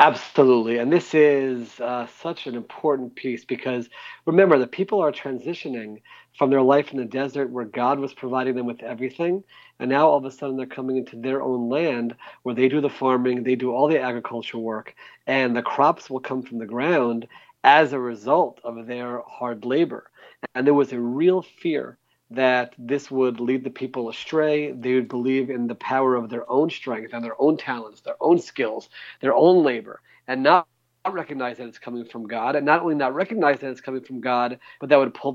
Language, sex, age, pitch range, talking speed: English, male, 40-59, 120-145 Hz, 205 wpm